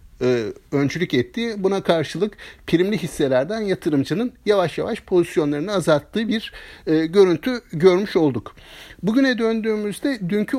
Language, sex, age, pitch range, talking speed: Turkish, male, 60-79, 155-215 Hz, 100 wpm